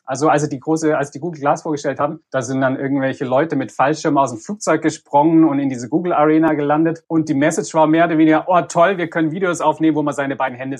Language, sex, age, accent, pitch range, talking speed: German, male, 30-49, German, 135-160 Hz, 245 wpm